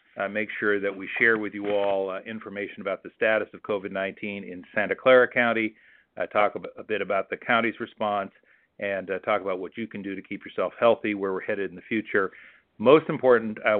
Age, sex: 50-69, male